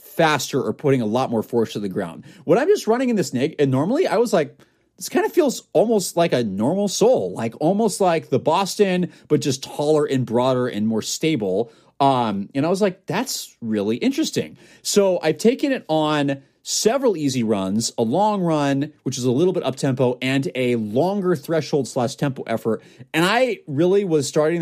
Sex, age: male, 30-49